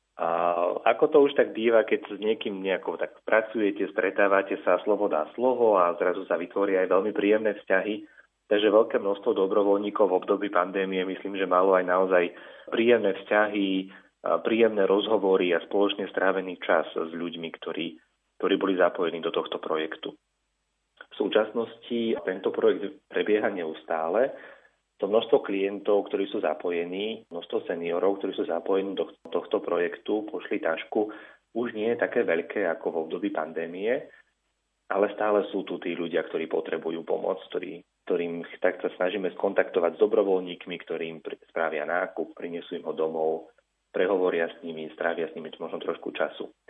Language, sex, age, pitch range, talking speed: Slovak, male, 30-49, 90-110 Hz, 155 wpm